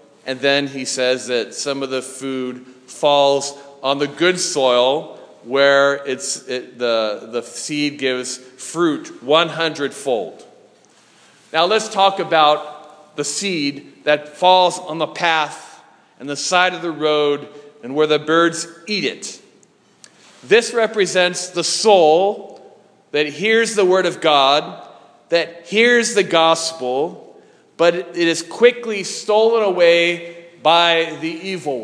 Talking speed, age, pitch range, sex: 130 wpm, 40-59, 150-195 Hz, male